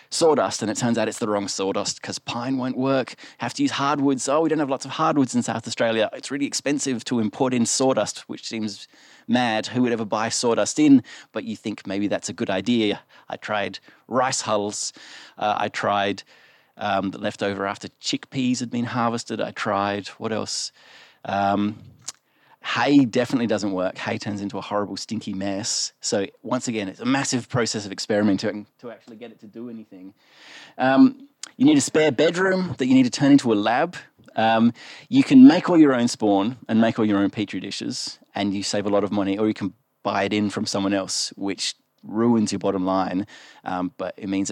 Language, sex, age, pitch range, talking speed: English, male, 30-49, 100-125 Hz, 205 wpm